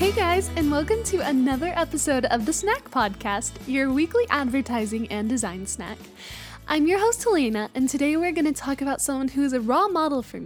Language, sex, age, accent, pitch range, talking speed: English, female, 10-29, American, 245-330 Hz, 200 wpm